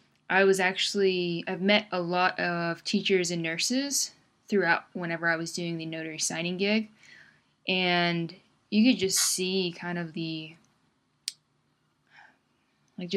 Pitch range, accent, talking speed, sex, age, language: 175-210 Hz, American, 130 wpm, female, 10-29, English